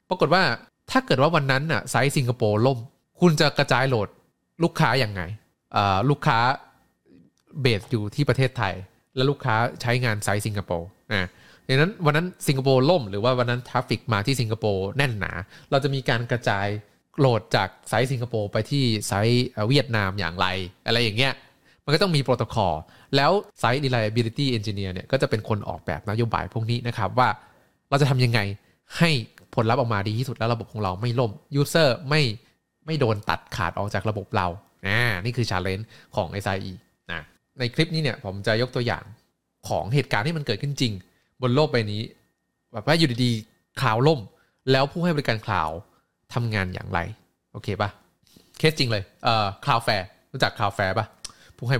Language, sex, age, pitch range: Thai, male, 20-39, 105-135 Hz